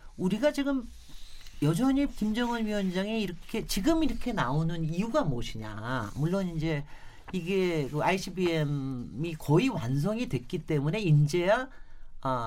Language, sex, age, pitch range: Korean, male, 40-59, 150-235 Hz